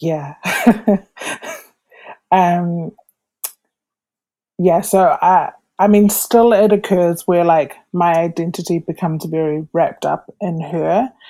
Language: English